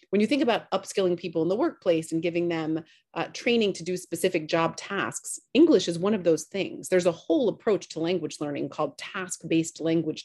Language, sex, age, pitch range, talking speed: English, female, 30-49, 165-205 Hz, 205 wpm